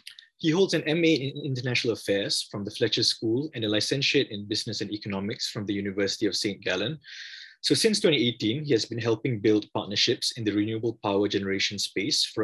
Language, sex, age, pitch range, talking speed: English, male, 20-39, 105-150 Hz, 195 wpm